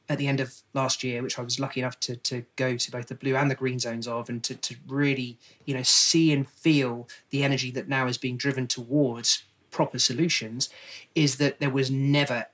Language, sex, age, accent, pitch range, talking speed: English, male, 30-49, British, 125-140 Hz, 225 wpm